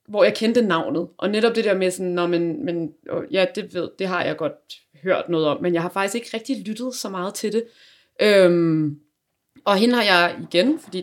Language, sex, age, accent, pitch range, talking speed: Danish, female, 20-39, native, 170-215 Hz, 225 wpm